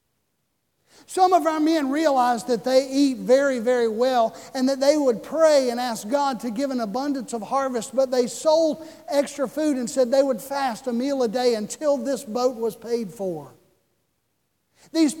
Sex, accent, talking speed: male, American, 180 wpm